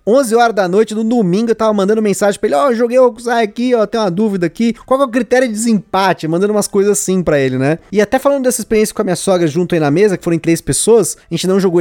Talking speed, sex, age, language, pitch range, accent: 305 wpm, male, 20-39, Portuguese, 200-245 Hz, Brazilian